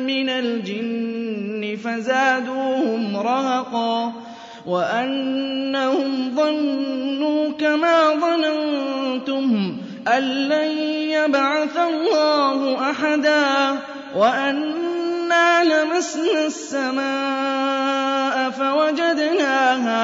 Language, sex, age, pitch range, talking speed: Arabic, male, 20-39, 230-270 Hz, 50 wpm